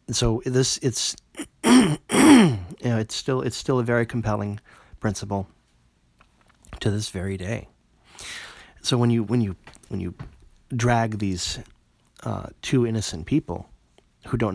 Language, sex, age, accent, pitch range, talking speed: English, male, 30-49, American, 95-120 Hz, 130 wpm